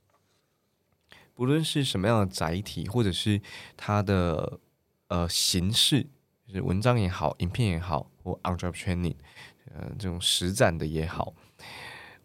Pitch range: 90-115 Hz